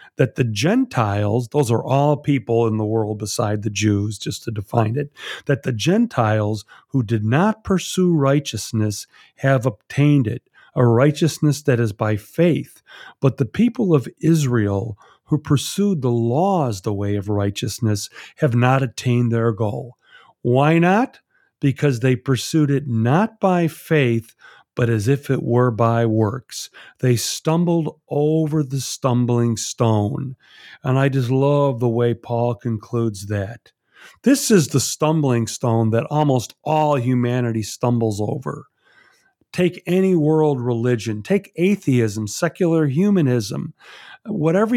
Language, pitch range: English, 115-160 Hz